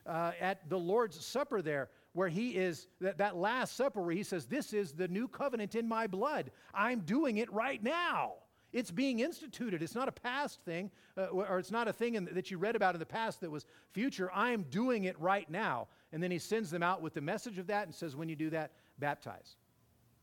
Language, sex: English, male